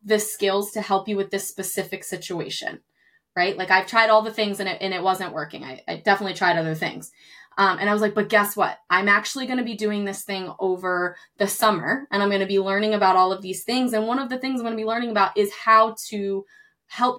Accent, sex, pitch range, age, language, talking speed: American, female, 185-225 Hz, 20-39, English, 245 wpm